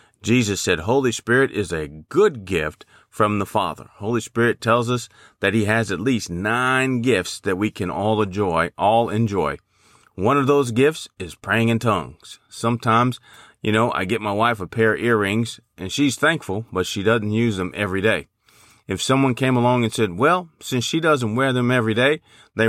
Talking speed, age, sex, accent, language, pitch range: 195 wpm, 40-59, male, American, English, 105-130 Hz